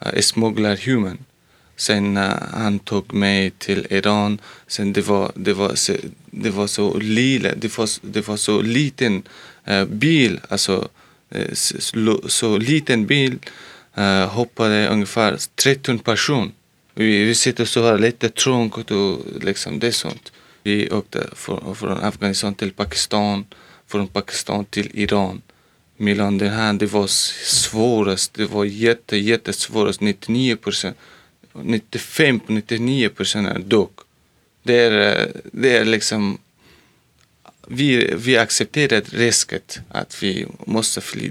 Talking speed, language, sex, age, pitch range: 125 wpm, Swedish, male, 20-39, 100-115 Hz